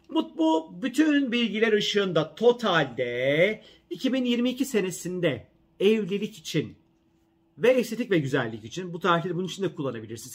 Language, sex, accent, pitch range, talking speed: Turkish, male, native, 155-200 Hz, 115 wpm